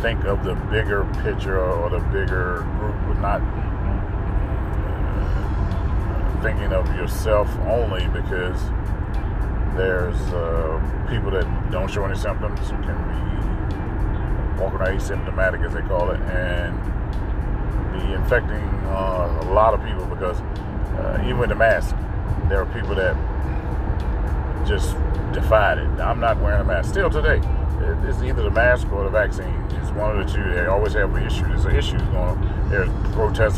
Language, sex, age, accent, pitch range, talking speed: English, male, 40-59, American, 90-100 Hz, 155 wpm